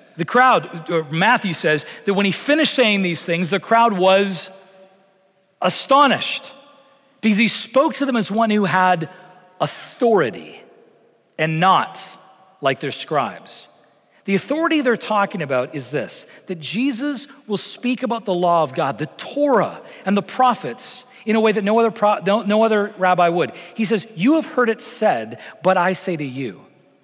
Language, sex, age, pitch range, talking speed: English, male, 40-59, 170-240 Hz, 165 wpm